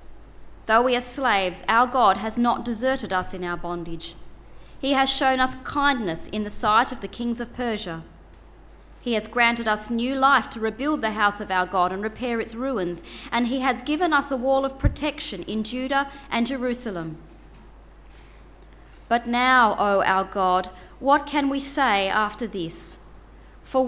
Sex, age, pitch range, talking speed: female, 30-49, 200-260 Hz, 170 wpm